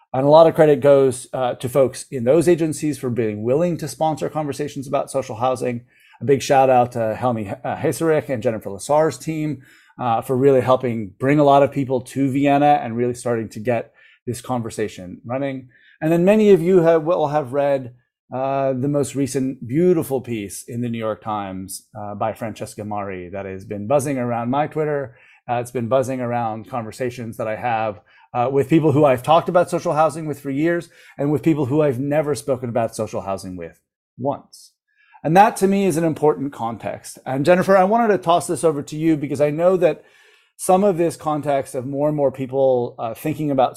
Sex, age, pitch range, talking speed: male, 30-49, 120-155 Hz, 205 wpm